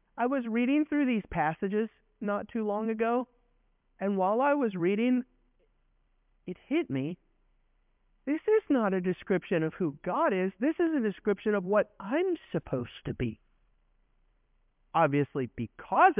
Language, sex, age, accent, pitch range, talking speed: English, male, 50-69, American, 155-225 Hz, 145 wpm